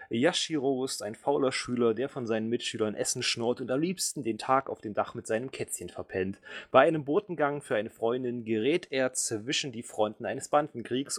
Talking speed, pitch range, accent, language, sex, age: 195 wpm, 115-140 Hz, German, German, male, 30-49